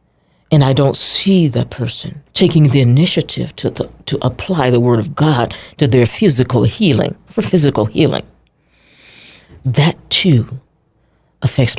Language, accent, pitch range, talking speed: English, American, 125-155 Hz, 140 wpm